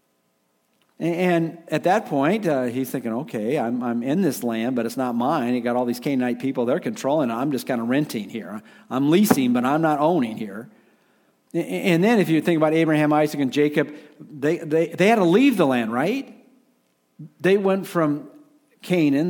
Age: 50-69